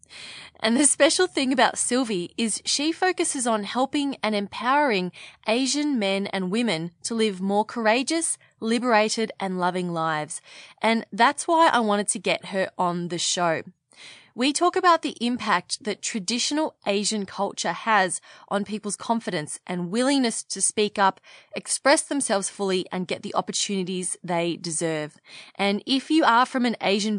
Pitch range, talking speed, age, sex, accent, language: 190-255 Hz, 155 wpm, 20-39, female, Australian, English